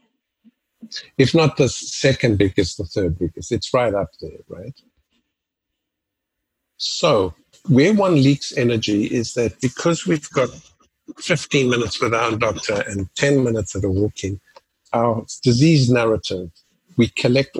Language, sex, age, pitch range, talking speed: English, male, 50-69, 105-140 Hz, 135 wpm